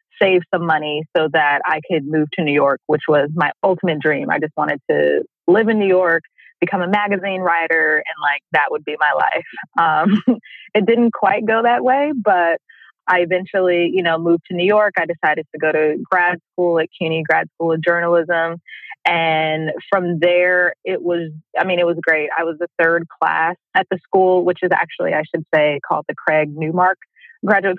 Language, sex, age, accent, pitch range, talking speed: English, female, 20-39, American, 155-190 Hz, 200 wpm